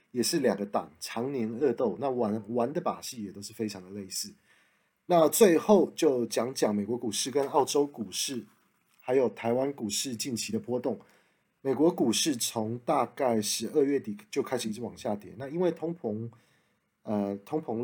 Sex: male